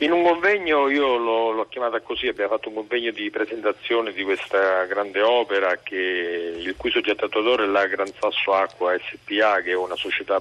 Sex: male